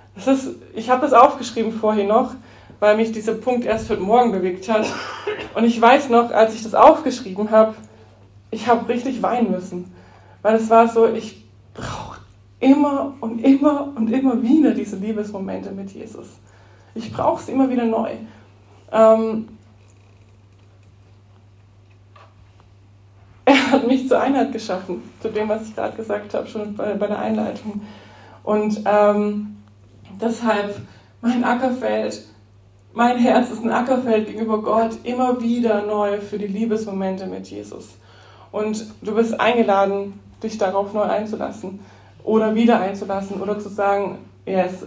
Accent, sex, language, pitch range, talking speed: German, female, English, 190-240 Hz, 145 wpm